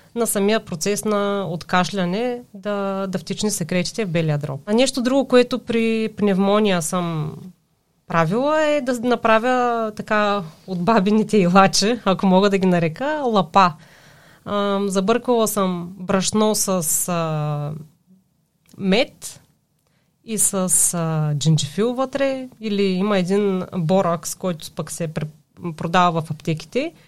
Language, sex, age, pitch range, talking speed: Bulgarian, female, 30-49, 170-215 Hz, 120 wpm